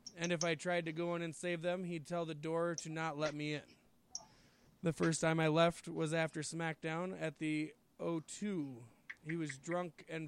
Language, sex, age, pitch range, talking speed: English, male, 20-39, 155-180 Hz, 200 wpm